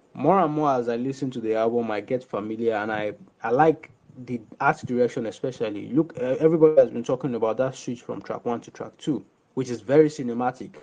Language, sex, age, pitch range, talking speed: English, male, 20-39, 120-140 Hz, 210 wpm